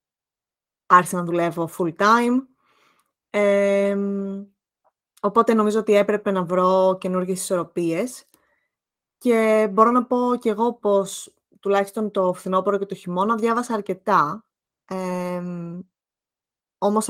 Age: 20-39